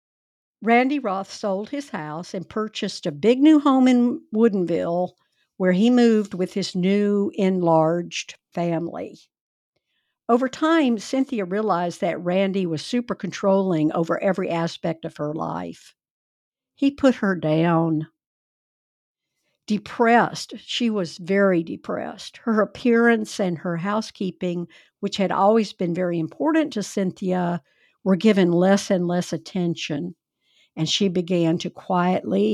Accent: American